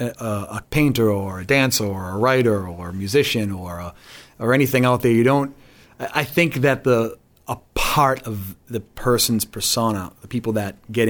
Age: 40-59